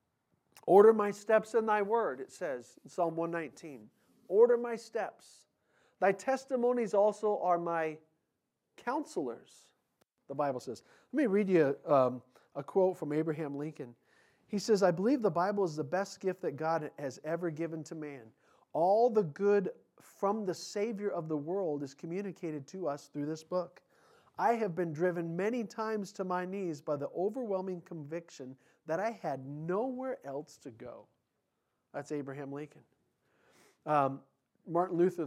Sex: male